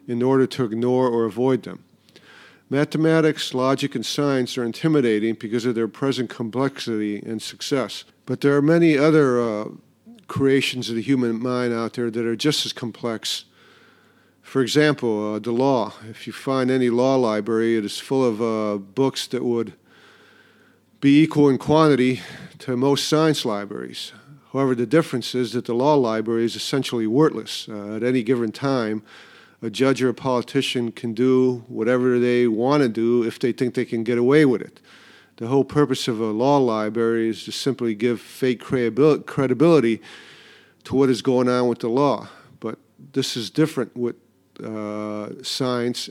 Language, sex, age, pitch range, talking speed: English, male, 50-69, 115-135 Hz, 170 wpm